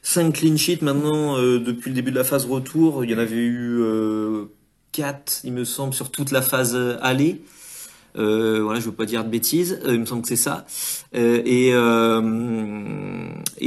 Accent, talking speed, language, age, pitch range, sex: French, 200 wpm, French, 30-49, 105-125 Hz, male